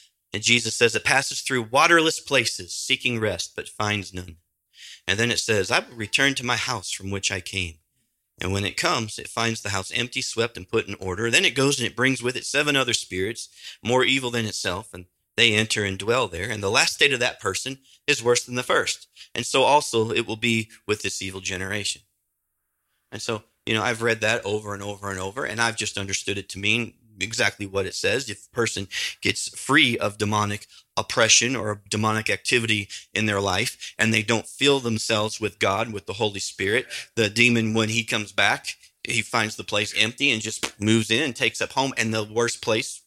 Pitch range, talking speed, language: 100-125 Hz, 215 wpm, English